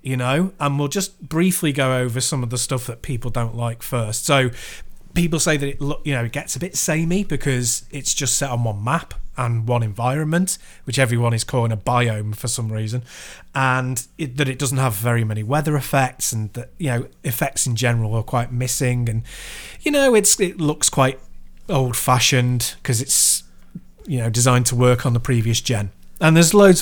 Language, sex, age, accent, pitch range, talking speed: English, male, 30-49, British, 120-155 Hz, 200 wpm